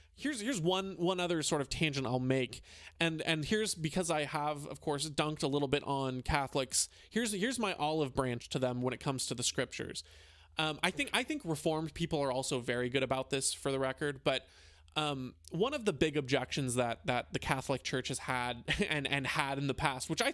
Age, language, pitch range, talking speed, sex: 20-39, English, 130-175 Hz, 220 wpm, male